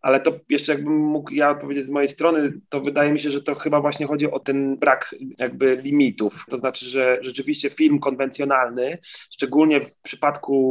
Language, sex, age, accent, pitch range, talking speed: Polish, male, 30-49, native, 130-150 Hz, 185 wpm